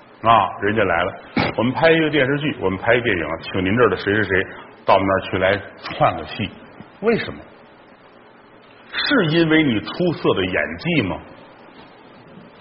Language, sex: Chinese, male